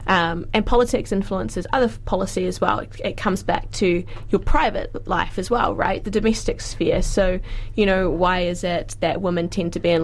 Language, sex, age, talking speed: English, female, 20-39, 205 wpm